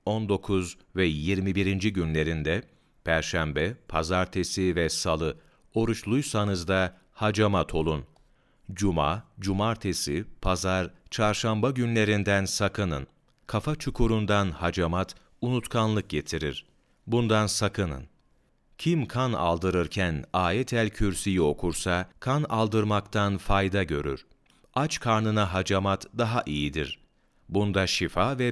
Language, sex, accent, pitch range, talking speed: Turkish, male, native, 85-110 Hz, 90 wpm